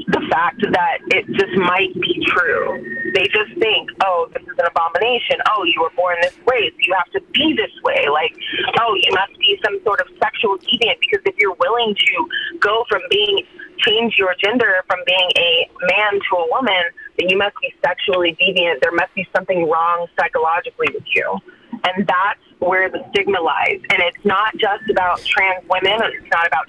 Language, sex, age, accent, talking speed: English, female, 30-49, American, 195 wpm